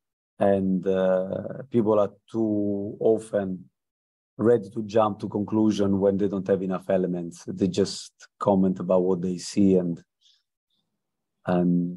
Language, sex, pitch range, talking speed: English, male, 95-110 Hz, 130 wpm